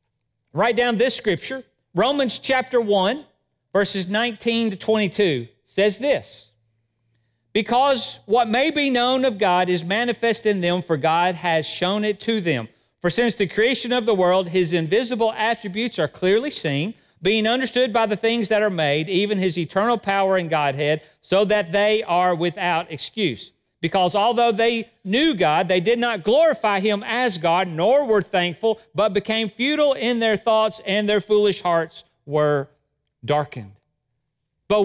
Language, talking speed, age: English, 160 wpm, 40-59